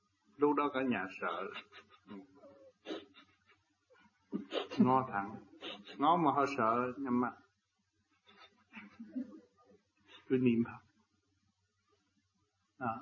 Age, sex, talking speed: 60-79, male, 75 wpm